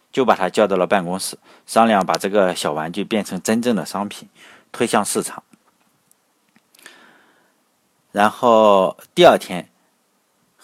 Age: 50-69